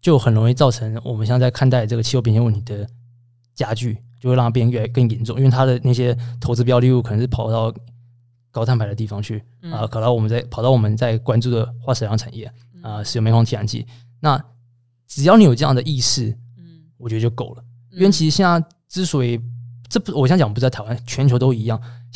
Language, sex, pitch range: Chinese, male, 120-135 Hz